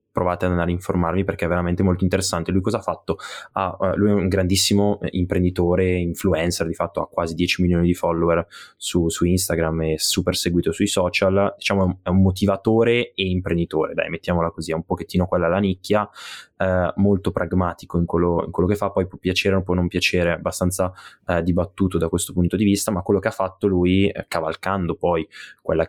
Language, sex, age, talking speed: Italian, male, 20-39, 200 wpm